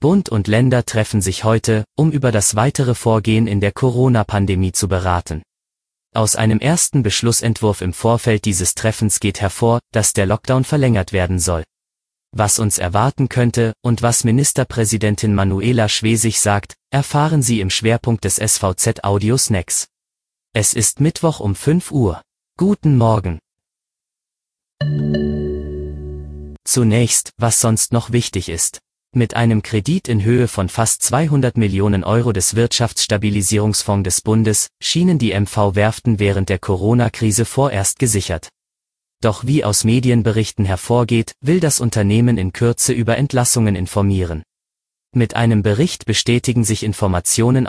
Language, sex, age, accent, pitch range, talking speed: German, male, 30-49, German, 100-120 Hz, 130 wpm